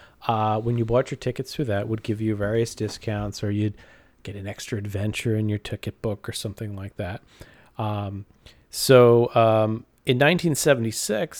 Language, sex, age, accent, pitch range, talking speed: English, male, 40-59, American, 105-135 Hz, 170 wpm